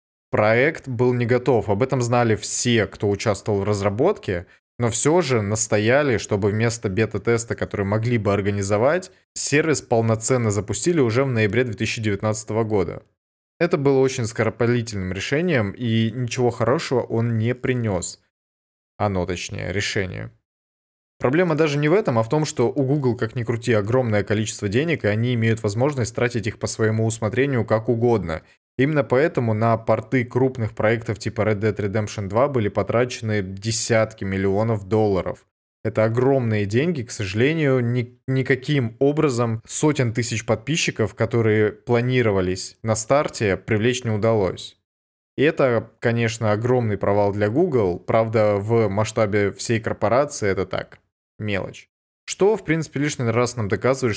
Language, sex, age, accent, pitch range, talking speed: Russian, male, 20-39, native, 105-125 Hz, 140 wpm